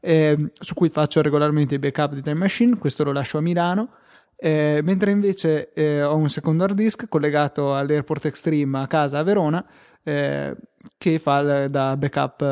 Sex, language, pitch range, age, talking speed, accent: male, Italian, 145-170 Hz, 20-39, 175 wpm, native